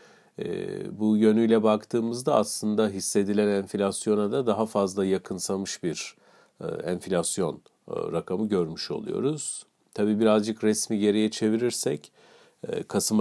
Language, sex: Turkish, male